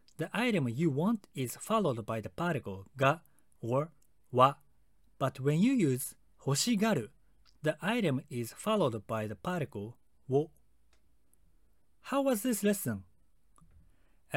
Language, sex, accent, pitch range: Japanese, male, native, 110-180 Hz